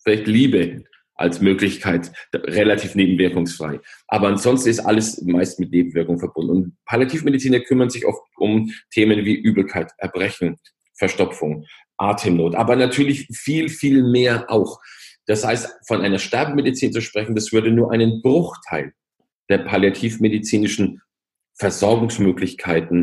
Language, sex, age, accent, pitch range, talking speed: German, male, 40-59, German, 95-125 Hz, 120 wpm